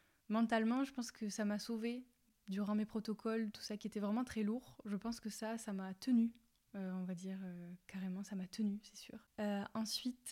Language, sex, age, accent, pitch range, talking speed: French, female, 20-39, French, 195-225 Hz, 215 wpm